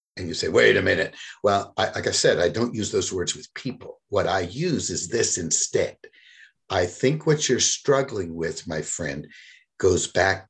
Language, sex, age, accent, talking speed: English, male, 60-79, American, 190 wpm